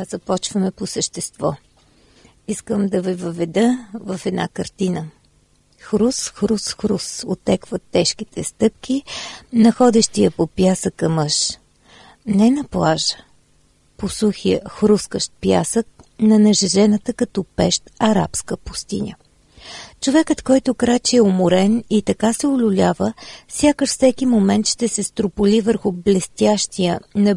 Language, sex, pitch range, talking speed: Bulgarian, female, 190-230 Hz, 115 wpm